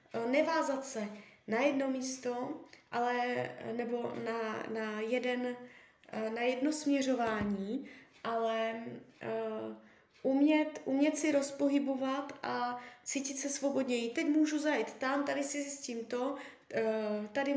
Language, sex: Czech, female